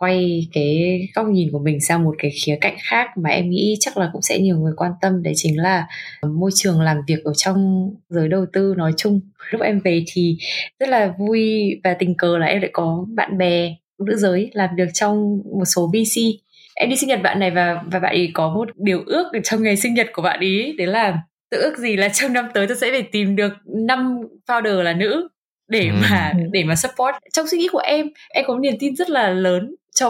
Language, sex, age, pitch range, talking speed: Vietnamese, female, 20-39, 180-230 Hz, 235 wpm